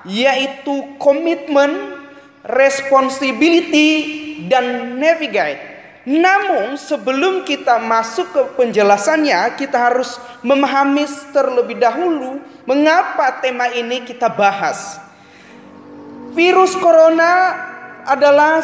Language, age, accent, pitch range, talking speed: Indonesian, 20-39, native, 245-320 Hz, 75 wpm